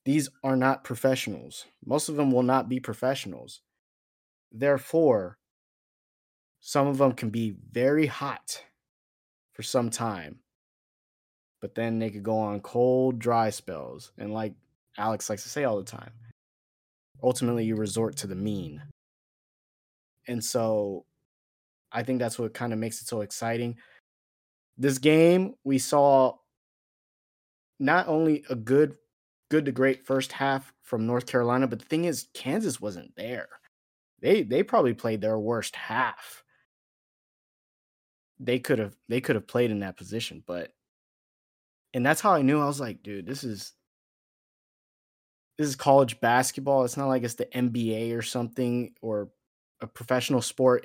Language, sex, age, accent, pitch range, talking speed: English, male, 20-39, American, 110-135 Hz, 150 wpm